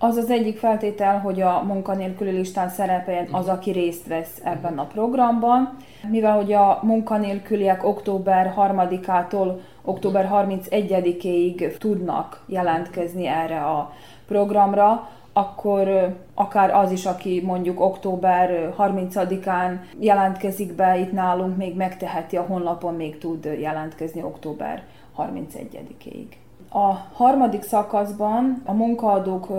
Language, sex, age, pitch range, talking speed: Hungarian, female, 20-39, 175-205 Hz, 120 wpm